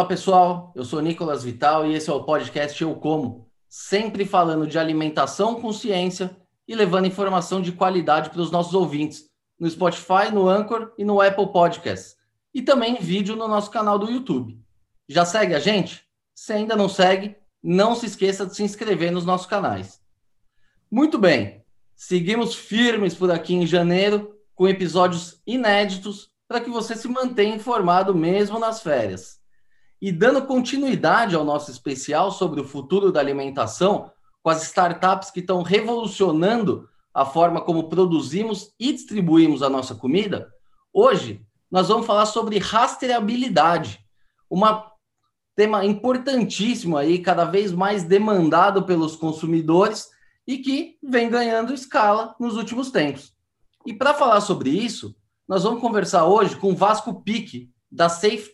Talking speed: 150 wpm